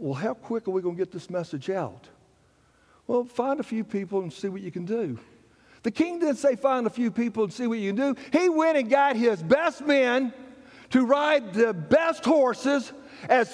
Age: 60-79